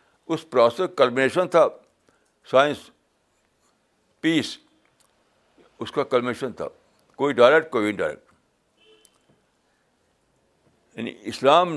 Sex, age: male, 60-79